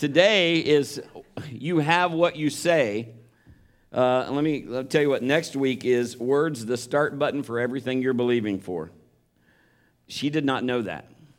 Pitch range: 115-145 Hz